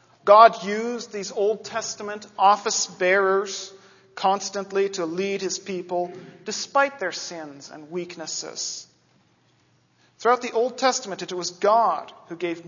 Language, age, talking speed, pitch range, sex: English, 40-59, 125 wpm, 180-240 Hz, male